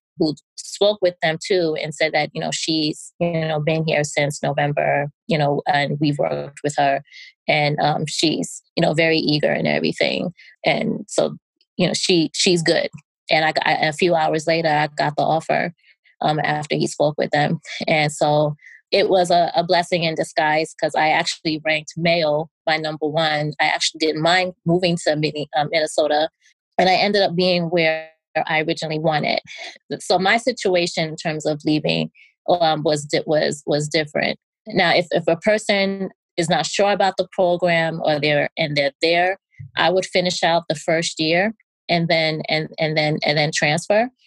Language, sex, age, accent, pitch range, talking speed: English, female, 20-39, American, 150-175 Hz, 180 wpm